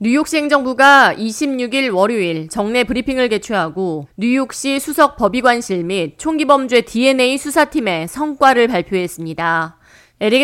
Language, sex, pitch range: Korean, female, 190-265 Hz